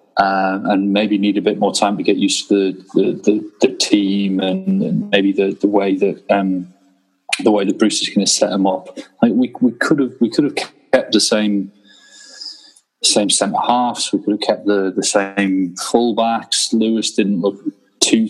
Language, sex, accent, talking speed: English, male, British, 205 wpm